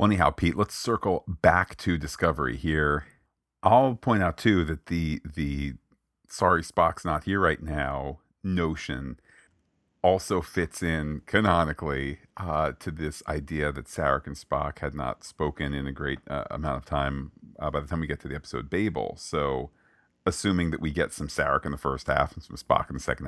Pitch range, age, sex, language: 75-90 Hz, 40-59, male, English